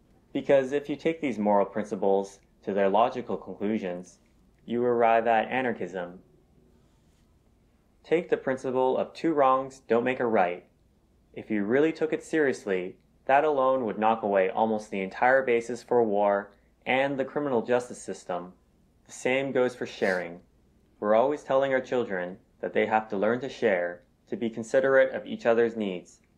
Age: 20-39